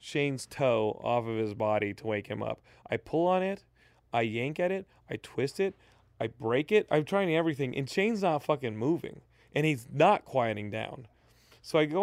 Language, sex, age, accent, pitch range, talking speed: English, male, 30-49, American, 120-175 Hz, 200 wpm